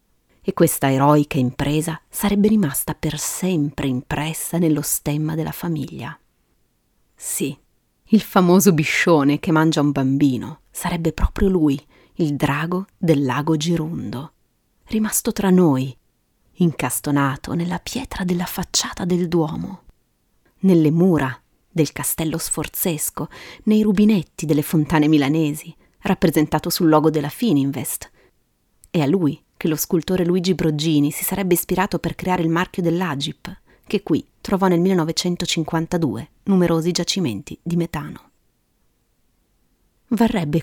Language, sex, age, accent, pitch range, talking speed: Italian, female, 30-49, native, 150-180 Hz, 120 wpm